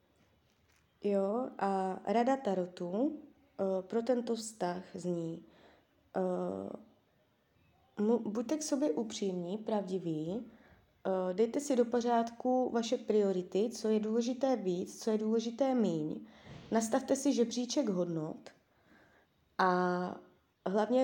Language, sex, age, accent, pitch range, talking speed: Czech, female, 20-39, native, 190-230 Hz, 105 wpm